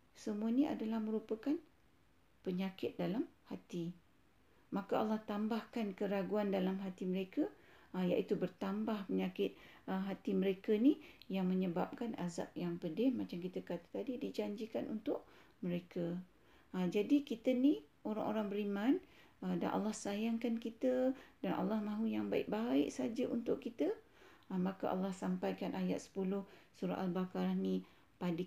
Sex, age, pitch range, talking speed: female, 50-69, 185-220 Hz, 120 wpm